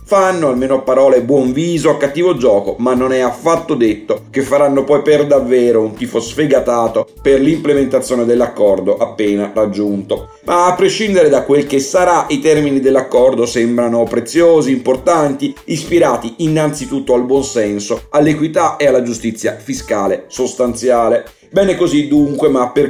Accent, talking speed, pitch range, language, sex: native, 145 wpm, 125-155 Hz, Italian, male